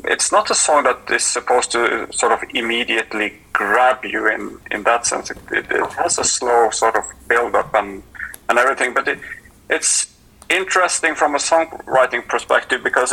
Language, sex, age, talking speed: English, male, 30-49, 180 wpm